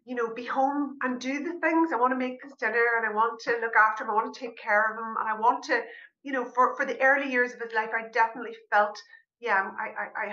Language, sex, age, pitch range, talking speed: English, female, 30-49, 200-265 Hz, 285 wpm